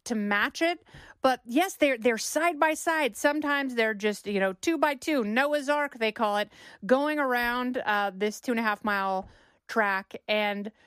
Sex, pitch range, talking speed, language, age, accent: female, 205-260 Hz, 190 wpm, English, 30-49, American